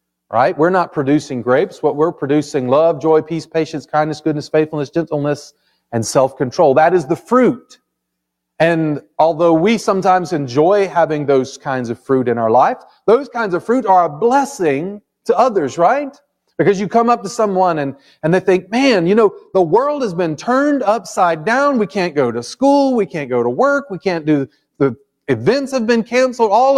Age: 40-59